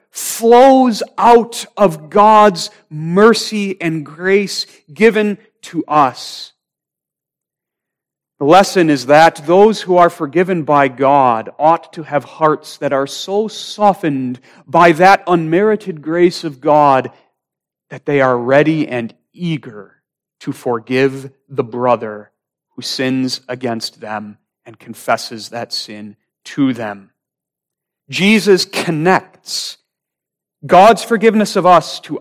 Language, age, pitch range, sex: English, 40-59, 140-200 Hz, male